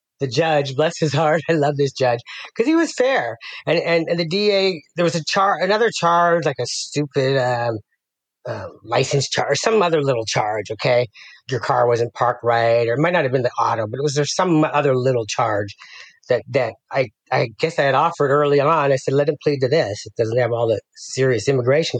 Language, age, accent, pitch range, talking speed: English, 40-59, American, 130-165 Hz, 220 wpm